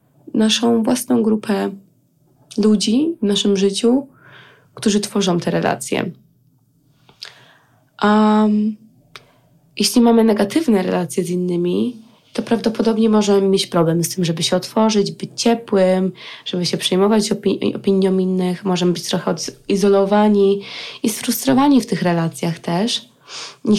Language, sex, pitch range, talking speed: Polish, female, 170-215 Hz, 115 wpm